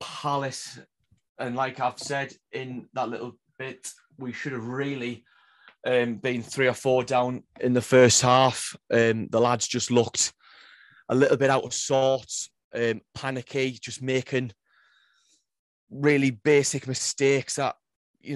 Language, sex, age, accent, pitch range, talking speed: English, male, 30-49, British, 120-135 Hz, 140 wpm